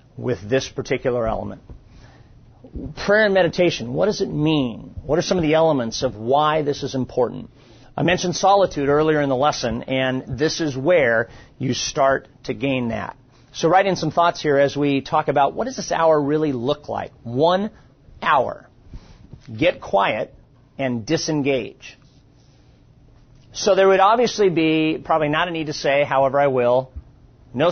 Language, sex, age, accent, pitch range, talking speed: English, male, 40-59, American, 125-155 Hz, 165 wpm